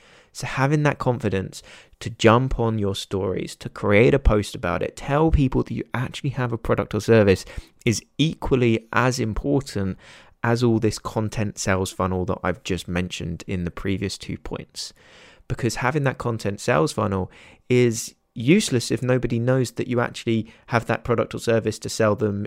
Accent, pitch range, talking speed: British, 100-125 Hz, 175 wpm